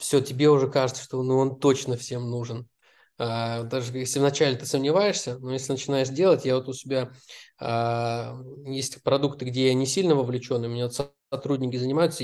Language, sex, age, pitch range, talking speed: Russian, male, 20-39, 120-140 Hz, 175 wpm